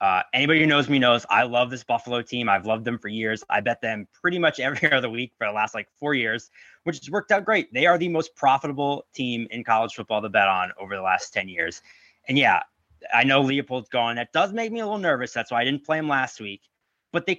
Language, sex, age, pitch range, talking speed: English, male, 20-39, 120-155 Hz, 260 wpm